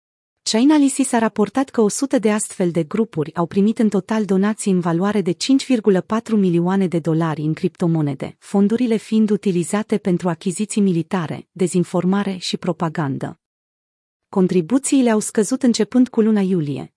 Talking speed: 140 wpm